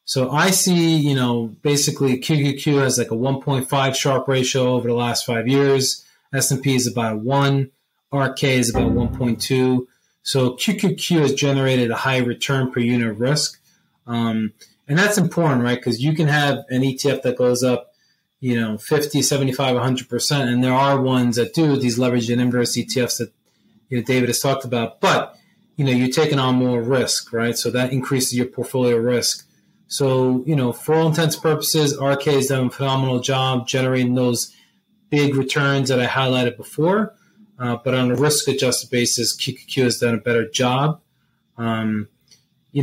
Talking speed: 175 wpm